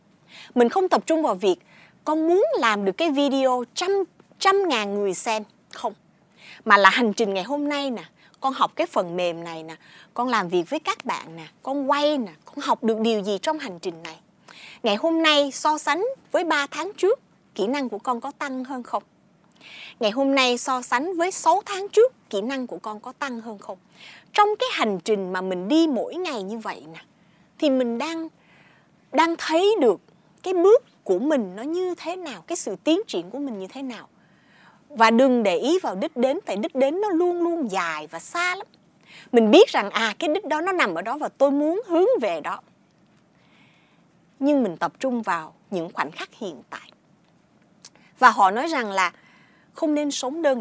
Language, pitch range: Vietnamese, 200-310 Hz